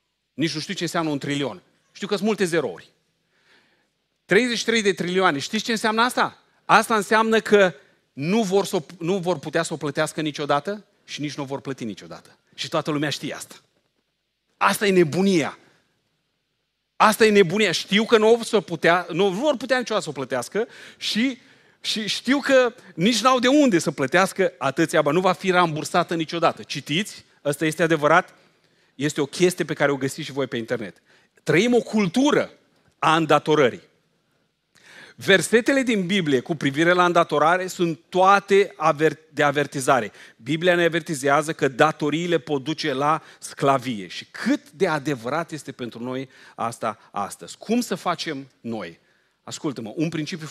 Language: Romanian